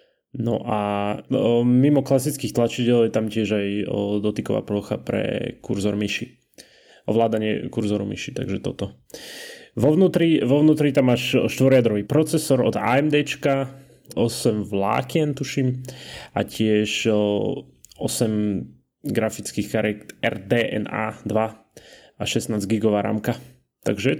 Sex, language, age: male, Slovak, 30-49